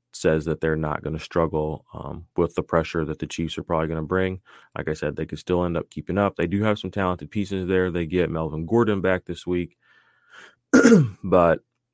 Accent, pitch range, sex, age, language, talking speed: American, 85-105 Hz, male, 30-49, English, 220 wpm